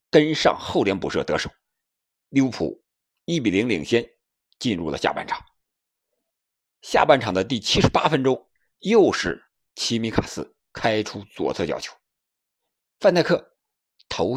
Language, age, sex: Chinese, 50-69, male